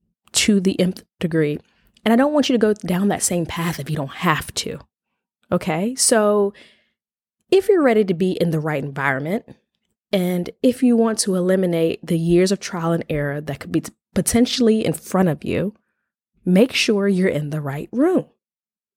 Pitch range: 165-225 Hz